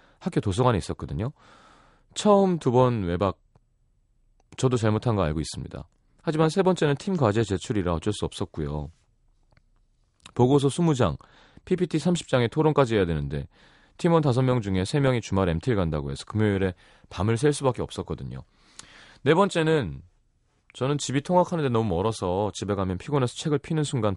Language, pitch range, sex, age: Korean, 90-140 Hz, male, 30-49